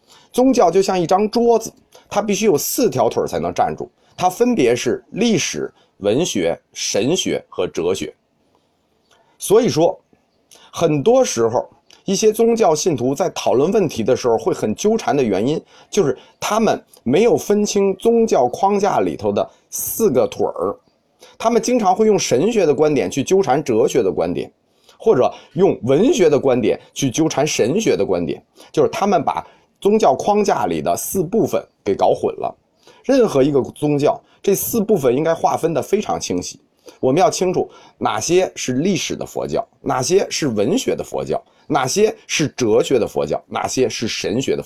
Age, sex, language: 30-49, male, Chinese